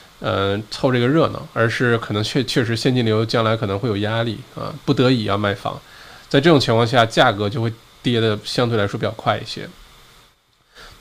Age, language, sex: 20-39, Chinese, male